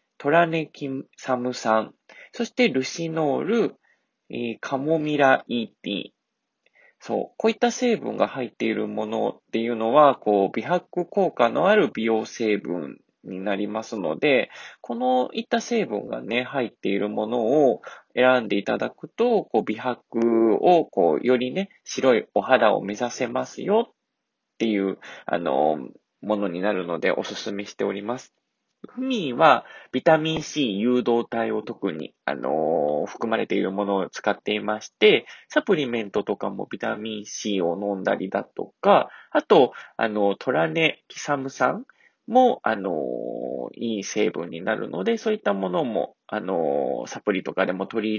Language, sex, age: Japanese, male, 20-39